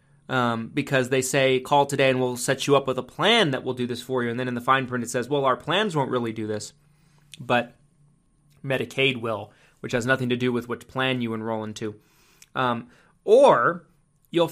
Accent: American